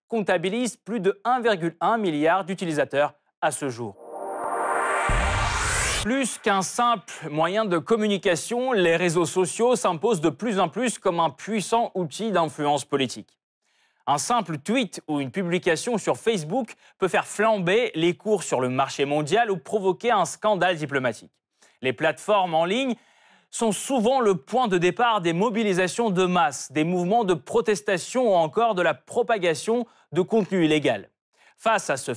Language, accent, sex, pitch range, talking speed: French, French, male, 155-220 Hz, 150 wpm